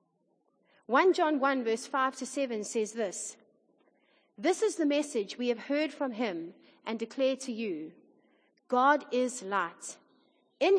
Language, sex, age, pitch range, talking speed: English, female, 30-49, 220-290 Hz, 145 wpm